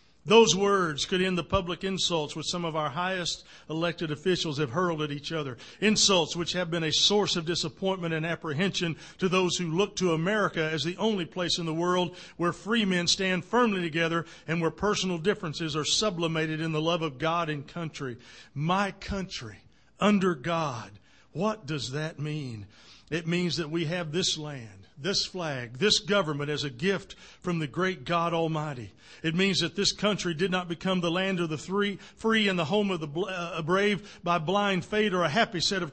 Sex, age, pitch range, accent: male, 50-69, 160-195 Hz, American